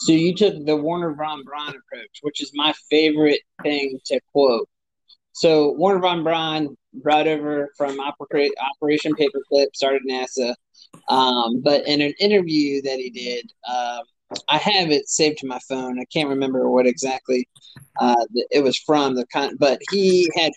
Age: 30-49